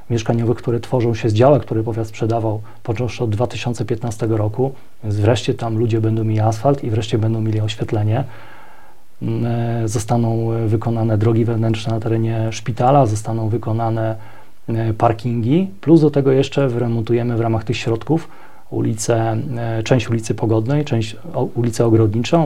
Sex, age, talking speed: male, 30-49, 140 wpm